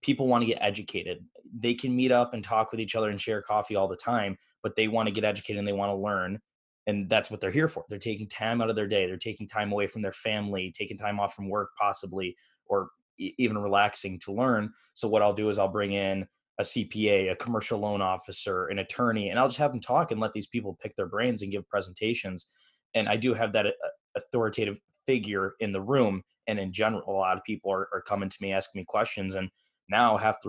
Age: 20-39